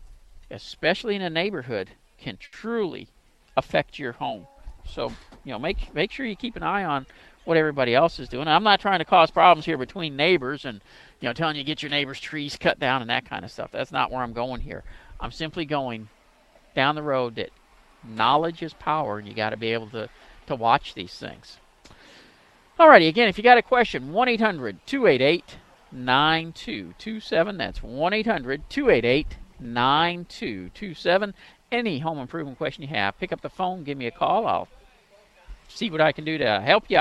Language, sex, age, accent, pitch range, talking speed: English, male, 50-69, American, 125-185 Hz, 190 wpm